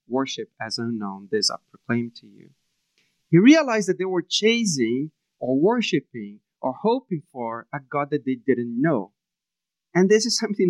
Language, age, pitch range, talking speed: English, 40-59, 140-190 Hz, 165 wpm